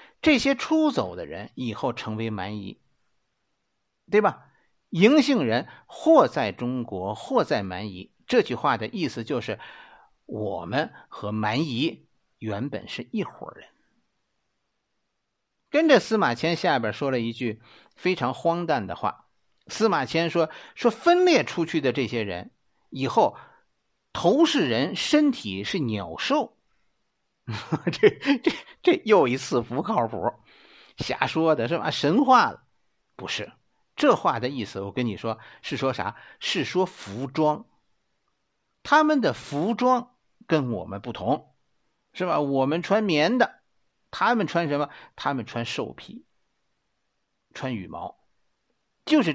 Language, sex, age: Chinese, male, 50-69